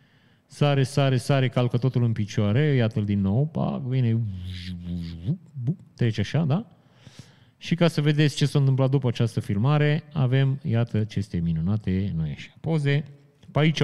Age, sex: 30-49, male